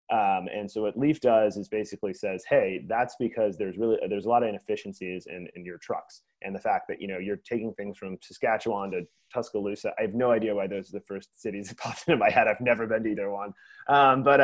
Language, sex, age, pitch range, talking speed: English, male, 30-49, 105-140 Hz, 245 wpm